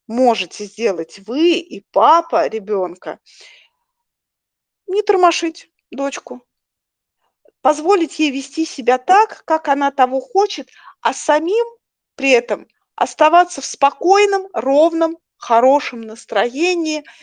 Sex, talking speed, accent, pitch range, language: female, 100 wpm, native, 230-340 Hz, Russian